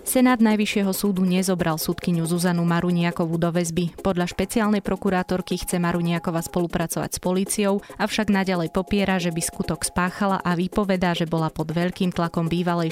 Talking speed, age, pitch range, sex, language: 150 wpm, 20-39, 165-190 Hz, female, Slovak